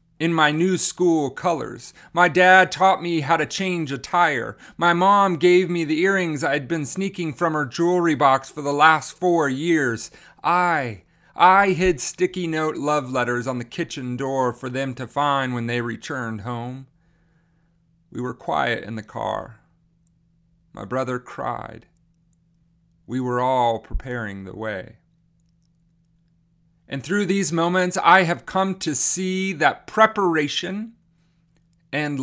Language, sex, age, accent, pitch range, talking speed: English, male, 30-49, American, 150-185 Hz, 145 wpm